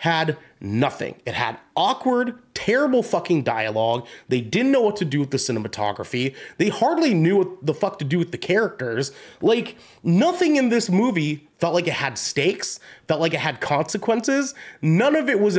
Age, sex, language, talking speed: 30-49, male, English, 180 wpm